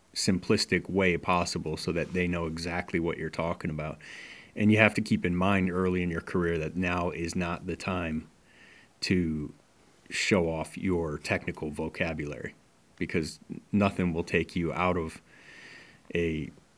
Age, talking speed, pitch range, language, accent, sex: 30-49, 155 wpm, 85-100 Hz, English, American, male